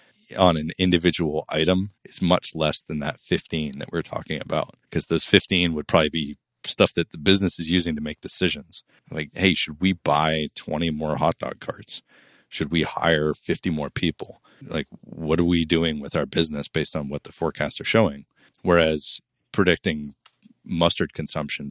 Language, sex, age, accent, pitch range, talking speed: English, male, 30-49, American, 75-85 Hz, 175 wpm